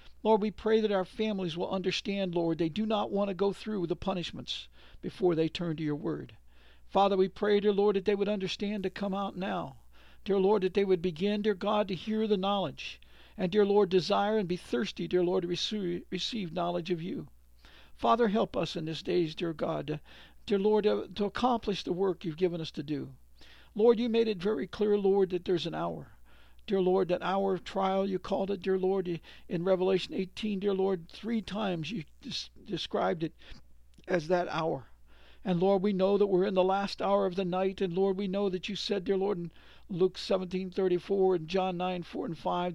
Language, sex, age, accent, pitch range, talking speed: English, male, 60-79, American, 175-200 Hz, 210 wpm